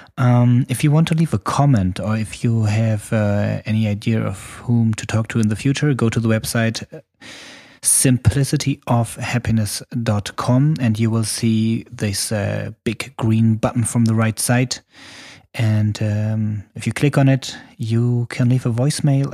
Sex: male